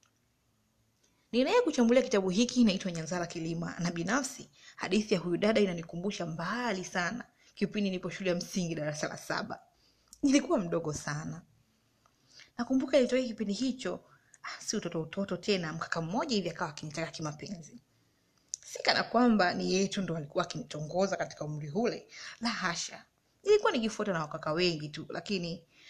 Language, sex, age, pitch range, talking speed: Swahili, female, 30-49, 165-235 Hz, 135 wpm